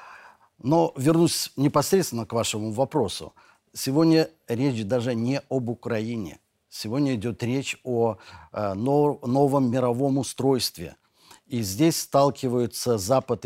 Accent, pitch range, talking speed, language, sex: native, 110-140 Hz, 105 wpm, Russian, male